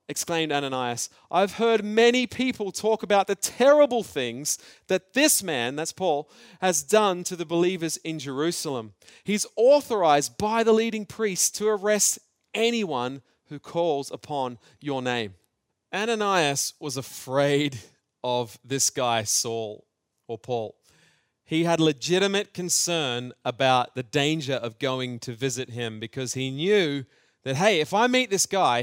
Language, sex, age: Japanese, male, 30-49